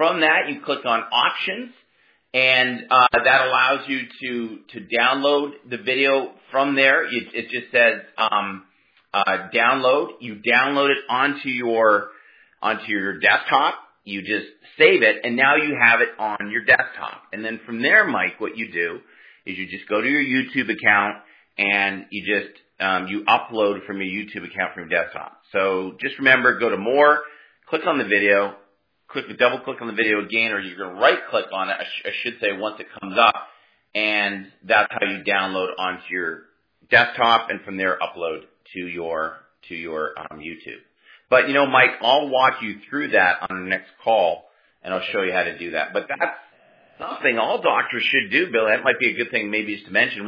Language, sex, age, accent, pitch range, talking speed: English, male, 40-59, American, 100-130 Hz, 195 wpm